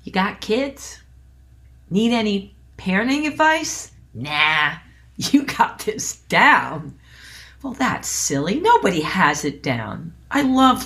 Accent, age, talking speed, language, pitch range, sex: American, 40-59, 115 wpm, English, 155-225 Hz, female